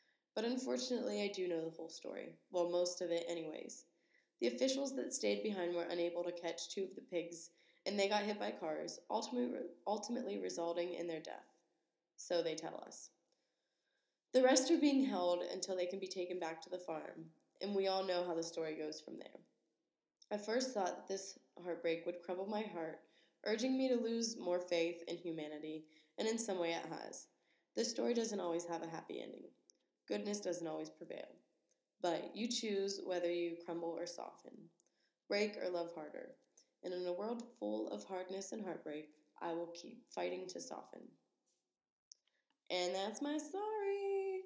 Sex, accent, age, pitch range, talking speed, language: female, American, 20-39, 165-215 Hz, 180 wpm, English